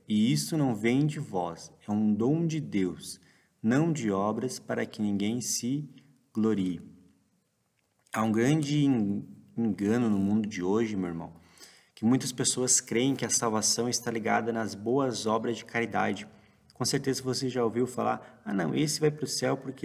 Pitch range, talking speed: 105-130 Hz, 170 wpm